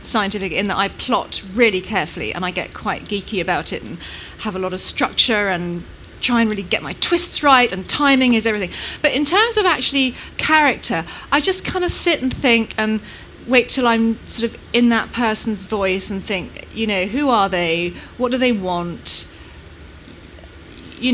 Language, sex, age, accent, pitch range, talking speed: English, female, 30-49, British, 200-265 Hz, 190 wpm